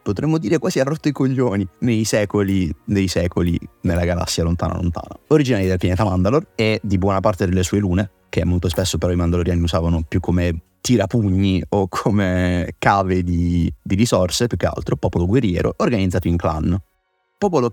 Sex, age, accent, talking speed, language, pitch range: male, 30-49, native, 175 wpm, Italian, 90-105 Hz